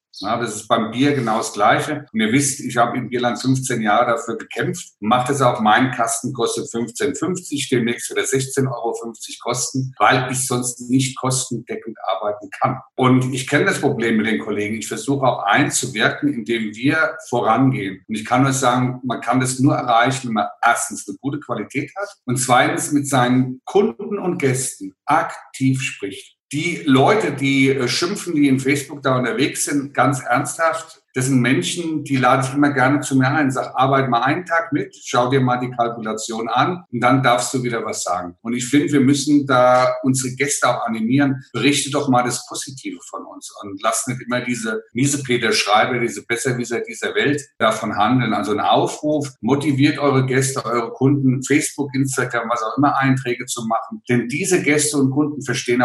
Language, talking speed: German, 185 wpm